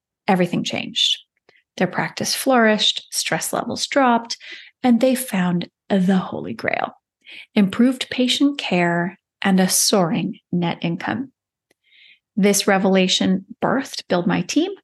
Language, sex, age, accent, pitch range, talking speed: English, female, 30-49, American, 185-245 Hz, 115 wpm